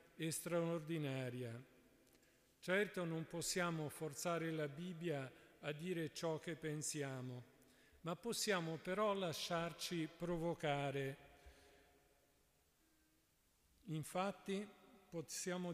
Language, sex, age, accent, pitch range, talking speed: Italian, male, 50-69, native, 150-180 Hz, 70 wpm